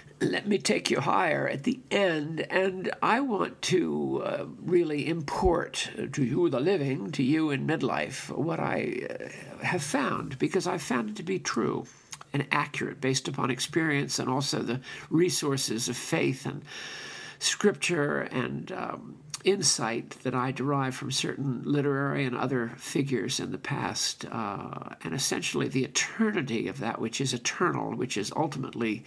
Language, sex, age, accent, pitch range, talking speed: English, male, 50-69, American, 130-165 Hz, 155 wpm